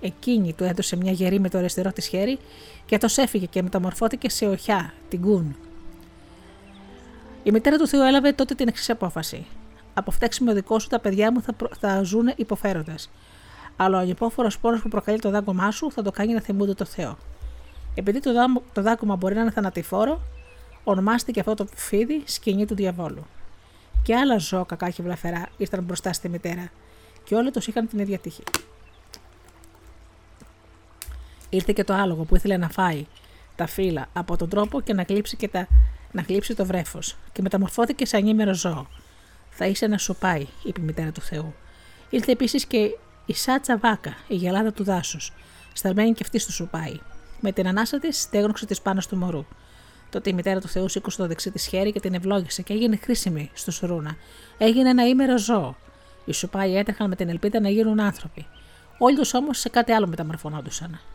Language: Greek